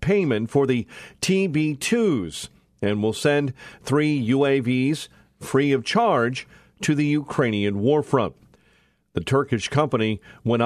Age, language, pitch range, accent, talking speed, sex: 50-69, English, 120-150 Hz, American, 120 wpm, male